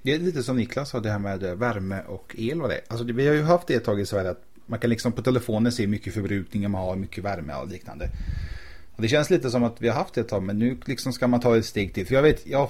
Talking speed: 310 wpm